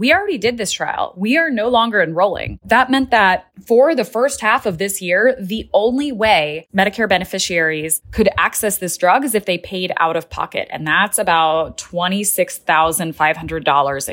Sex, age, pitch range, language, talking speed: female, 20-39, 165-210 Hz, English, 170 wpm